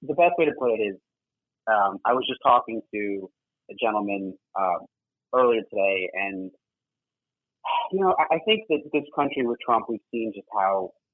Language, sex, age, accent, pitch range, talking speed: English, male, 30-49, American, 100-130 Hz, 180 wpm